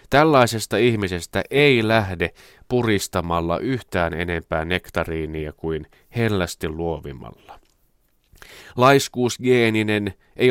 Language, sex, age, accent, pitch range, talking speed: Finnish, male, 30-49, native, 85-125 Hz, 75 wpm